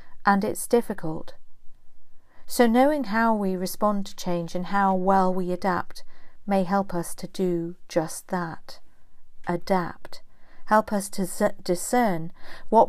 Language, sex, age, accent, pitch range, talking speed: English, female, 50-69, British, 175-215 Hz, 130 wpm